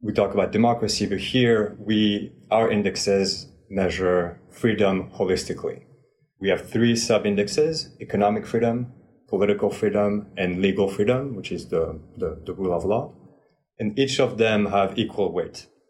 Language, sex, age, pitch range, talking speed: English, male, 30-49, 95-120 Hz, 145 wpm